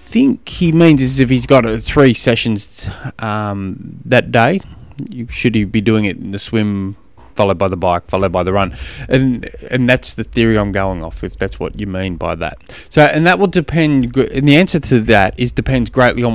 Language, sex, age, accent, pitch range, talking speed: English, male, 20-39, Australian, 100-125 Hz, 215 wpm